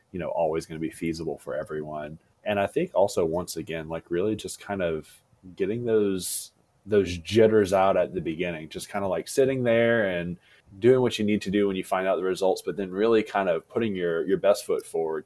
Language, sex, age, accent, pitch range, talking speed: English, male, 20-39, American, 85-110 Hz, 230 wpm